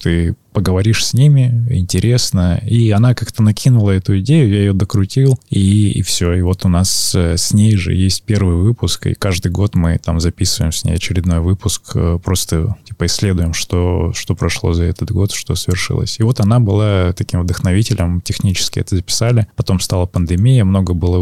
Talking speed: 175 wpm